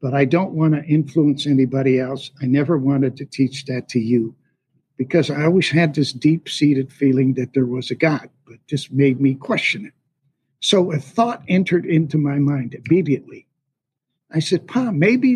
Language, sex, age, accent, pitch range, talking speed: English, male, 60-79, American, 140-185 Hz, 180 wpm